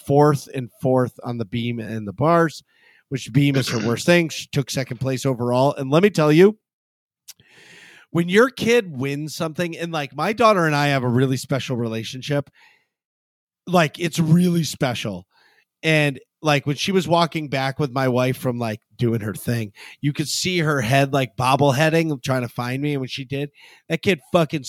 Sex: male